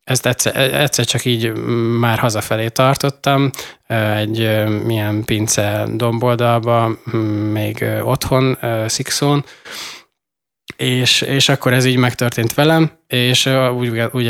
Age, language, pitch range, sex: 20-39, Hungarian, 105-125 Hz, male